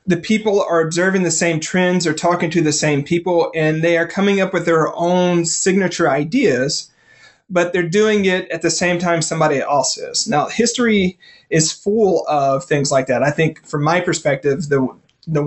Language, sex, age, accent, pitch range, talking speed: English, male, 30-49, American, 150-180 Hz, 190 wpm